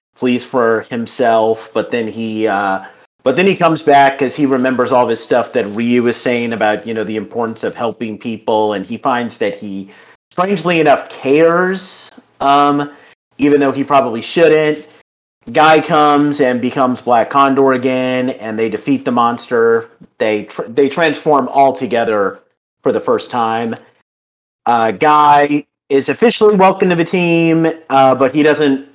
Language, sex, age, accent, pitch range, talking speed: English, male, 40-59, American, 115-150 Hz, 160 wpm